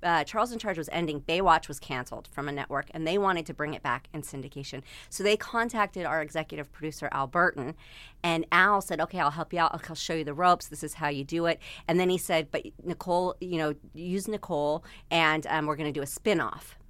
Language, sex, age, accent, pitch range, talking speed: English, female, 40-59, American, 145-175 Hz, 235 wpm